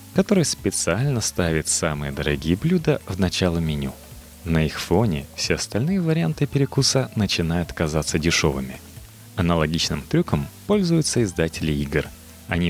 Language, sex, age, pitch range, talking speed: Russian, male, 30-49, 80-120 Hz, 120 wpm